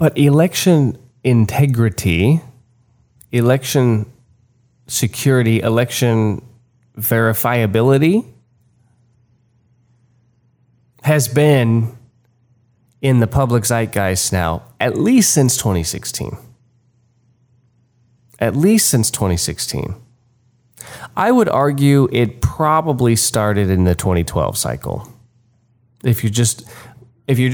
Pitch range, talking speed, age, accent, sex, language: 110-125 Hz, 75 wpm, 20-39, American, male, English